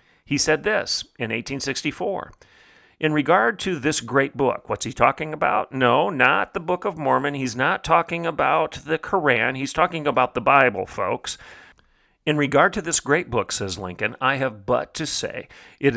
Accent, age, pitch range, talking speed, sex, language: American, 40-59, 120-155 Hz, 175 wpm, male, English